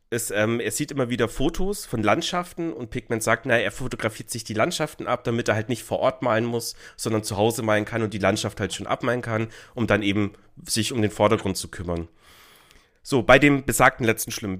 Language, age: German, 30-49